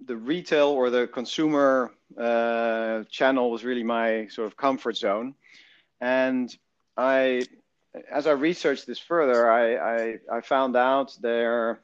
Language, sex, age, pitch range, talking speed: English, male, 40-59, 115-130 Hz, 135 wpm